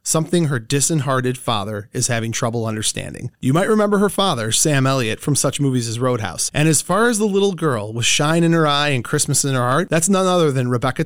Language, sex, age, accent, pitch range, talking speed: English, male, 30-49, American, 120-165 Hz, 230 wpm